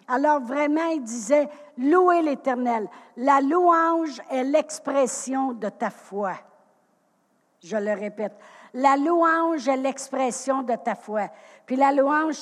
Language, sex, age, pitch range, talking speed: French, female, 60-79, 235-280 Hz, 150 wpm